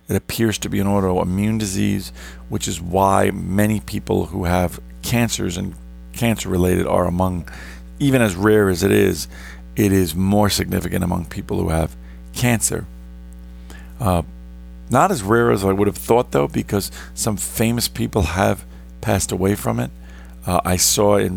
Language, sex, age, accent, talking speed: English, male, 40-59, American, 160 wpm